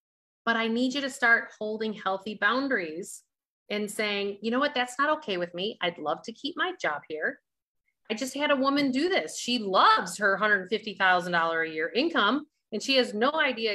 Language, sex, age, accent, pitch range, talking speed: English, female, 30-49, American, 190-255 Hz, 195 wpm